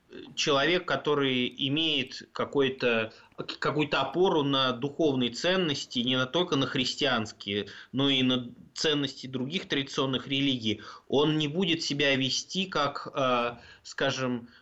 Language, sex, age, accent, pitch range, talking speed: Russian, male, 20-39, native, 135-165 Hz, 110 wpm